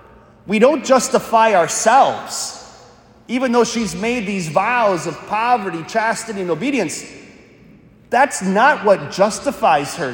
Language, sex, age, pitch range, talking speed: English, male, 30-49, 175-235 Hz, 120 wpm